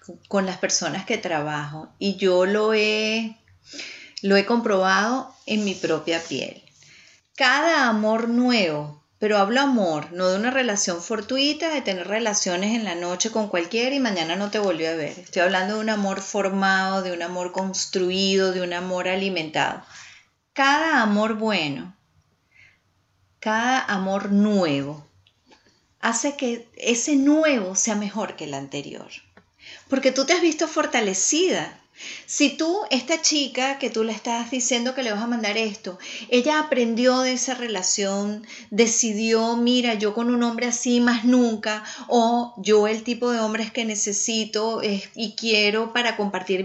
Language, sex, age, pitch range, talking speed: English, female, 30-49, 190-245 Hz, 150 wpm